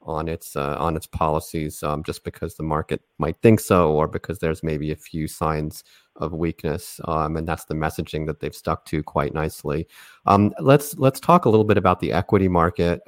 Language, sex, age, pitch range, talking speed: English, male, 30-49, 85-100 Hz, 205 wpm